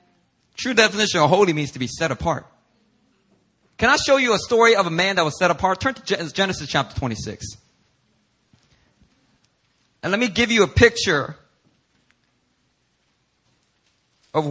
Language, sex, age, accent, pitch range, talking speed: English, male, 30-49, American, 130-200 Hz, 145 wpm